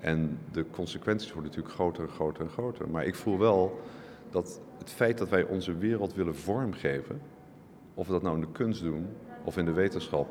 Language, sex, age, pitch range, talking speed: Dutch, male, 50-69, 90-115 Hz, 205 wpm